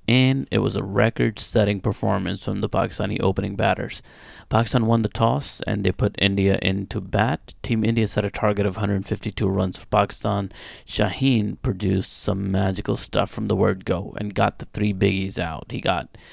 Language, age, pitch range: English, 30-49, 95-110 Hz